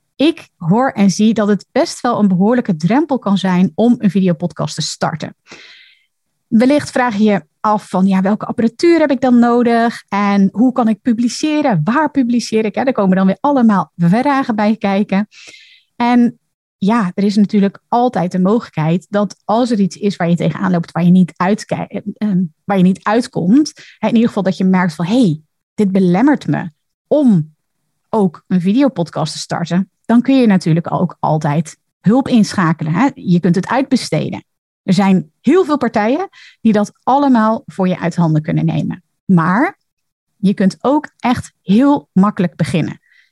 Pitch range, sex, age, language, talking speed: 180-240 Hz, female, 30-49, Dutch, 170 wpm